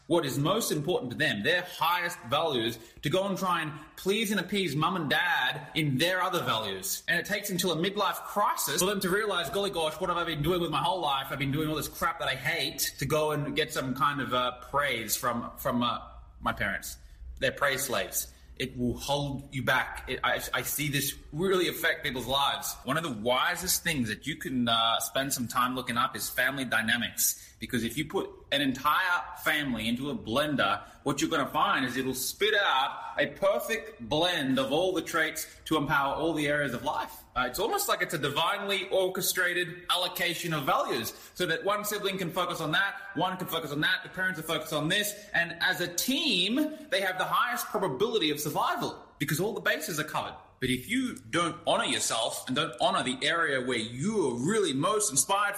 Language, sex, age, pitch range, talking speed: English, male, 20-39, 135-190 Hz, 215 wpm